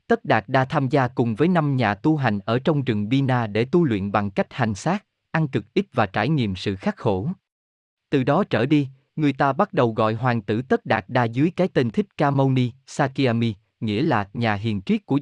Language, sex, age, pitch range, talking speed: Vietnamese, male, 20-39, 110-150 Hz, 235 wpm